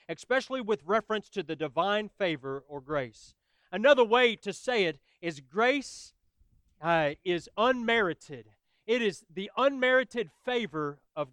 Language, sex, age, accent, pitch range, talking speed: English, male, 40-59, American, 175-230 Hz, 130 wpm